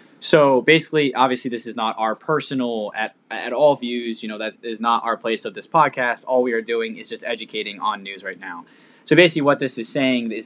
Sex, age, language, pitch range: male, 10-29, English, 105-130 Hz